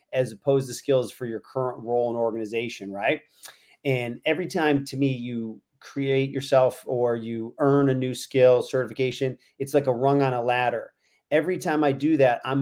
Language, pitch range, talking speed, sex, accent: English, 115-140 Hz, 185 wpm, male, American